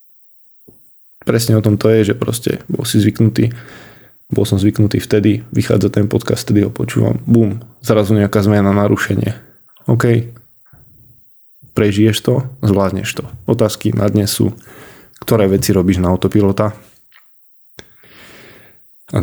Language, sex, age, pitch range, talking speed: Slovak, male, 20-39, 100-115 Hz, 125 wpm